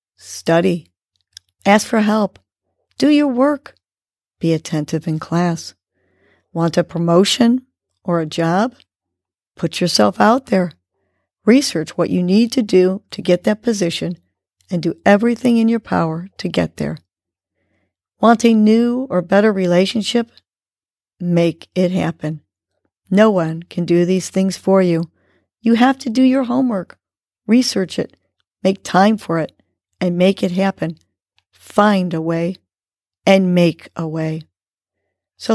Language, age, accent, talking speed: English, 40-59, American, 135 wpm